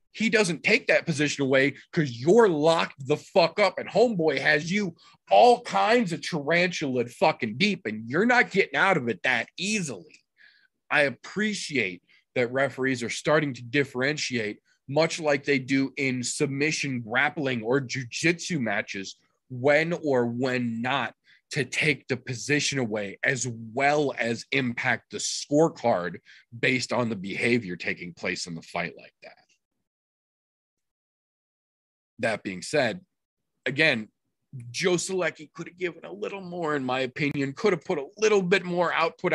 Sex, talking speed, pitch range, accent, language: male, 150 wpm, 125-170 Hz, American, English